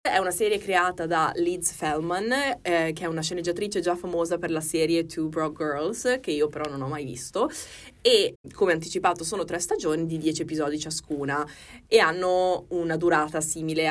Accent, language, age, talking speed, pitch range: native, Italian, 20-39, 180 wpm, 150-175 Hz